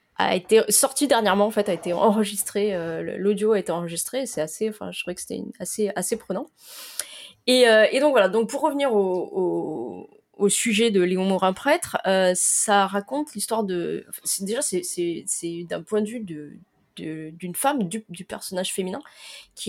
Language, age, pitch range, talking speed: French, 20-39, 175-220 Hz, 190 wpm